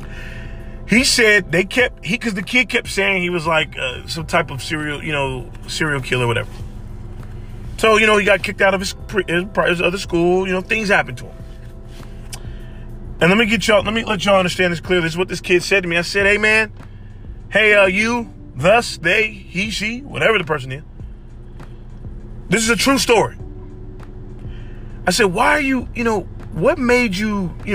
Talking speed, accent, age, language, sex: 200 wpm, American, 30-49, English, male